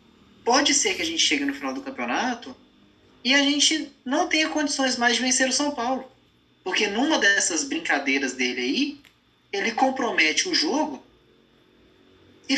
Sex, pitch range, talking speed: male, 225-300 Hz, 155 wpm